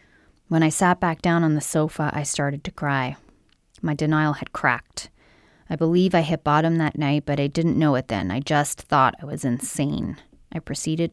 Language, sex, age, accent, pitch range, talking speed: English, female, 30-49, American, 150-180 Hz, 200 wpm